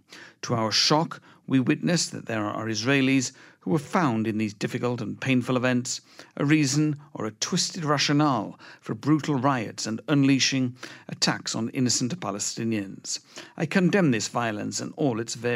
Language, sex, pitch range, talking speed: English, male, 115-150 Hz, 155 wpm